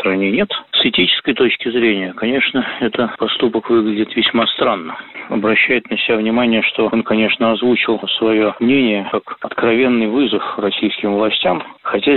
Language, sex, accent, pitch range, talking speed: Russian, male, native, 105-115 Hz, 135 wpm